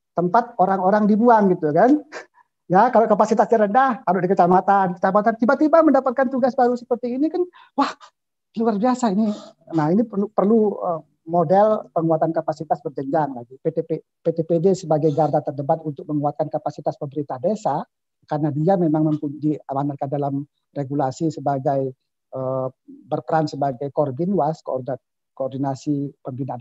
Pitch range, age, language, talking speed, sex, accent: 145-200 Hz, 50-69, Indonesian, 135 wpm, male, native